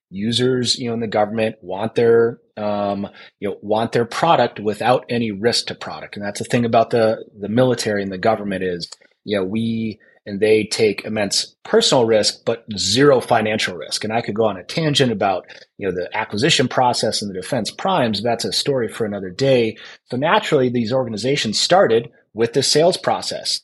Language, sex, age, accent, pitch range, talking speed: English, male, 30-49, American, 100-120 Hz, 200 wpm